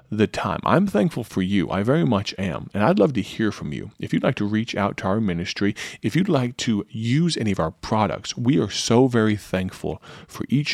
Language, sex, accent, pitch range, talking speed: English, male, American, 95-110 Hz, 235 wpm